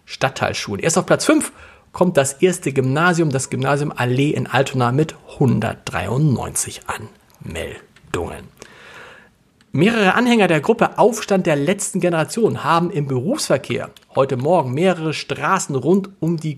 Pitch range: 135-180 Hz